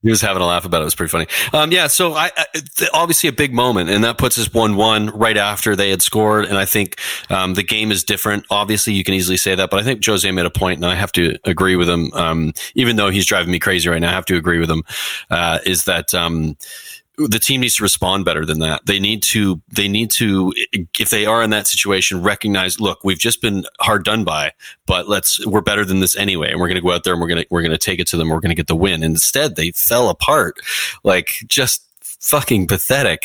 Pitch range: 85-110 Hz